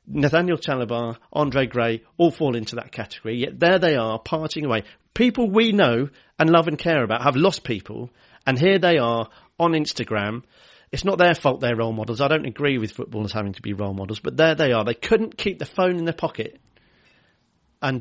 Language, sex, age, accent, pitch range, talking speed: English, male, 40-59, British, 115-155 Hz, 205 wpm